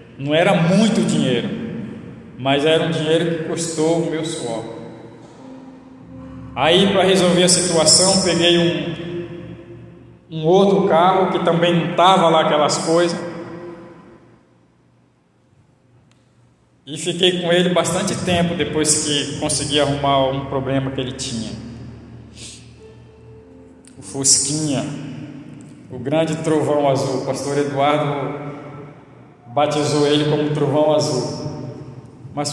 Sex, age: male, 20-39